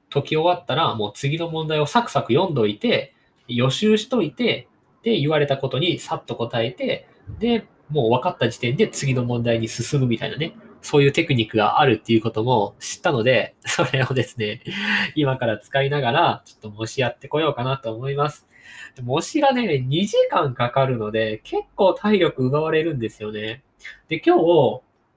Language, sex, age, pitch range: Japanese, male, 20-39, 115-175 Hz